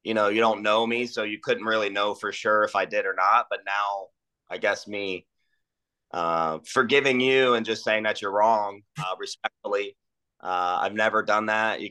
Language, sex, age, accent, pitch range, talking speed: English, male, 30-49, American, 95-125 Hz, 200 wpm